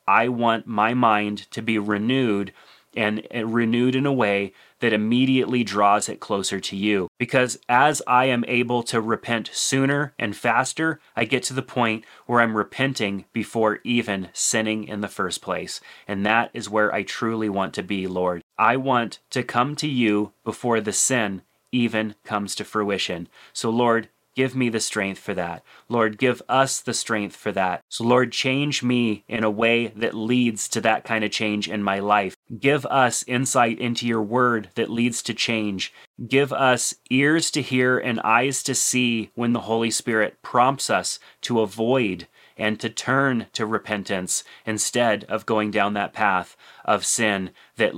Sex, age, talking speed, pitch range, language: male, 30-49, 175 wpm, 105-125 Hz, English